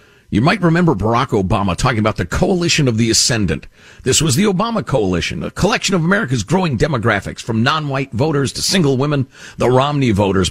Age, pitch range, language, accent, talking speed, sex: 50-69, 105-160 Hz, English, American, 185 wpm, male